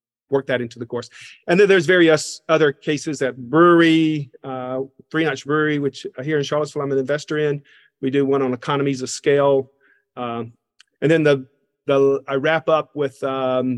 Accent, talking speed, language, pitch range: American, 185 wpm, English, 130-150 Hz